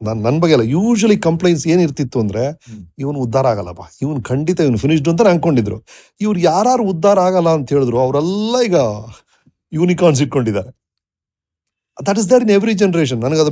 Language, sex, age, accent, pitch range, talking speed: Kannada, male, 40-59, native, 125-205 Hz, 145 wpm